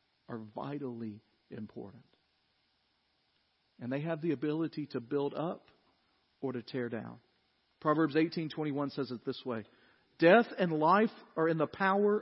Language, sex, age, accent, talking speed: English, male, 40-59, American, 135 wpm